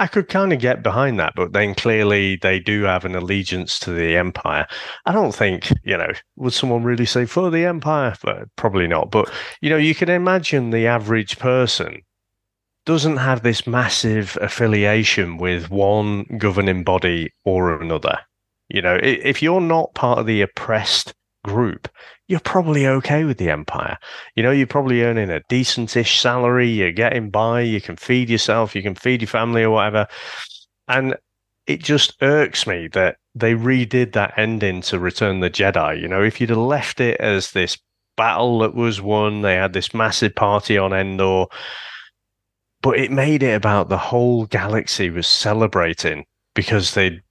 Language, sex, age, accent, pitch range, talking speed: English, male, 30-49, British, 100-125 Hz, 170 wpm